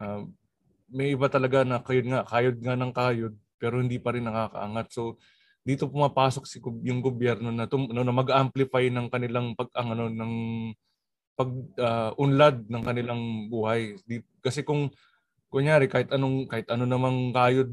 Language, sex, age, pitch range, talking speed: Filipino, male, 20-39, 120-135 Hz, 155 wpm